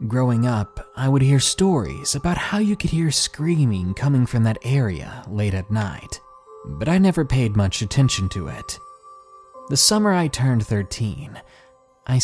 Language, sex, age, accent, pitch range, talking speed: English, male, 30-49, American, 110-155 Hz, 160 wpm